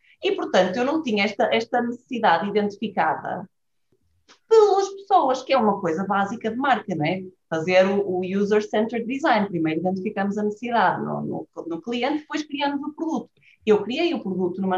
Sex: female